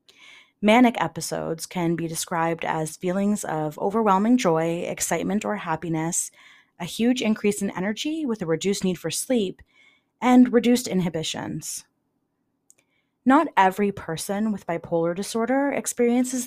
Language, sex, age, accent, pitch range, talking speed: English, female, 30-49, American, 165-240 Hz, 125 wpm